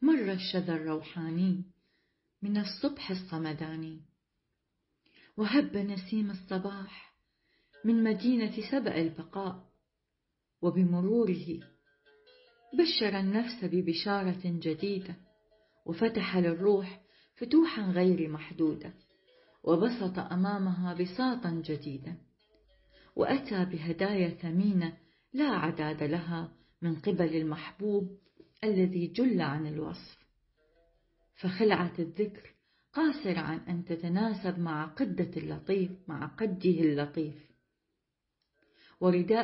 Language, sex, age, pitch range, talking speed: Arabic, female, 40-59, 165-210 Hz, 80 wpm